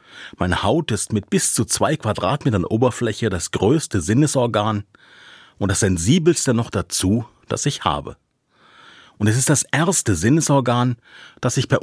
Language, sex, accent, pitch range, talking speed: German, male, German, 95-135 Hz, 145 wpm